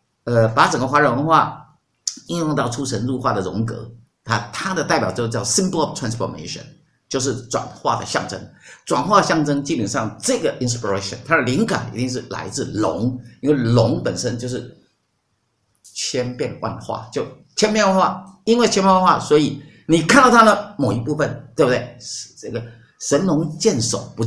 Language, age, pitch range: Chinese, 50-69, 120-165 Hz